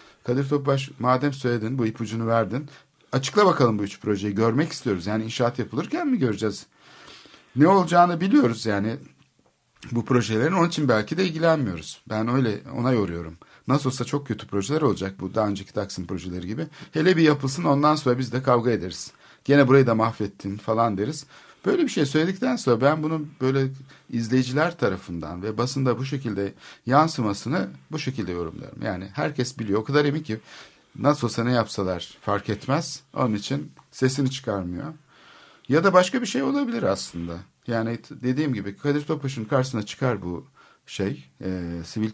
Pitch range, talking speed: 105-145 Hz, 160 wpm